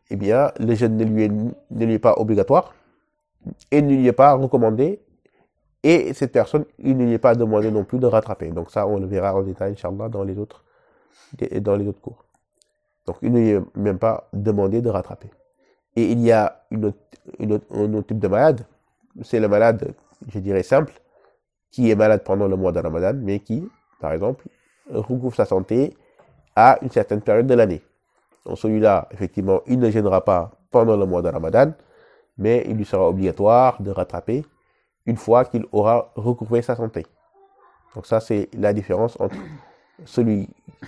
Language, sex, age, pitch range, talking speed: French, male, 30-49, 100-120 Hz, 190 wpm